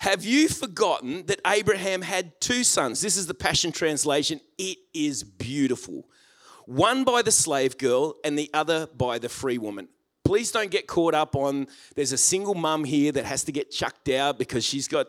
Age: 30-49